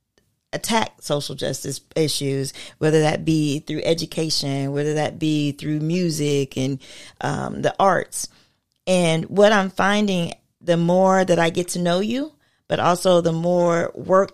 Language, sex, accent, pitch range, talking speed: English, female, American, 160-205 Hz, 145 wpm